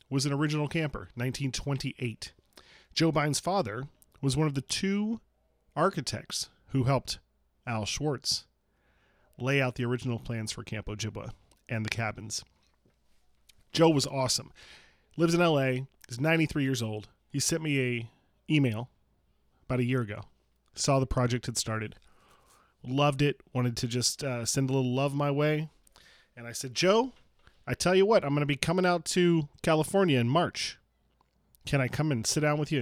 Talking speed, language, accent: 165 wpm, English, American